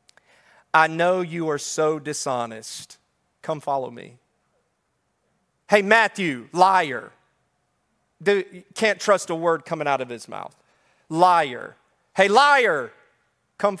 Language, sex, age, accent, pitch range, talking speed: English, male, 40-59, American, 170-245 Hz, 110 wpm